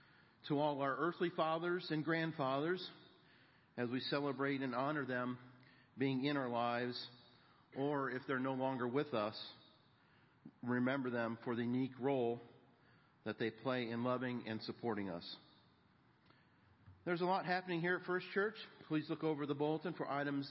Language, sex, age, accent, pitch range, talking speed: English, male, 50-69, American, 125-155 Hz, 155 wpm